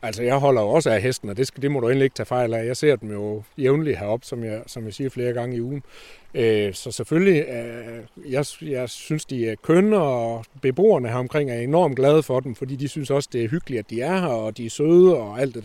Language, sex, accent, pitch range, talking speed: Danish, male, native, 110-145 Hz, 265 wpm